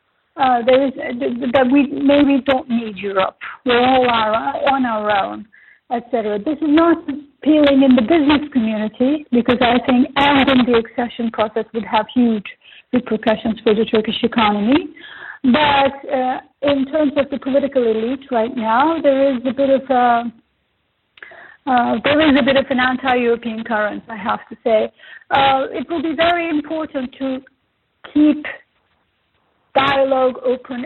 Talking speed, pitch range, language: 155 wpm, 235-285 Hz, English